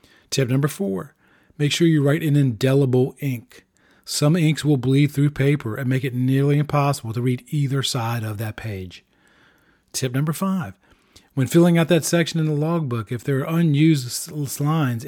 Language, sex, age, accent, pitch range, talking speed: English, male, 40-59, American, 125-155 Hz, 175 wpm